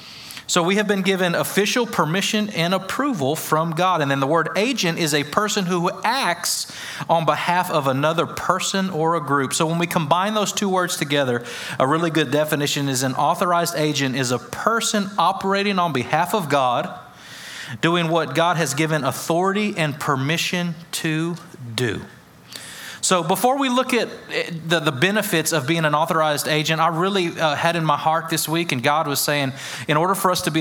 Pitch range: 145-175 Hz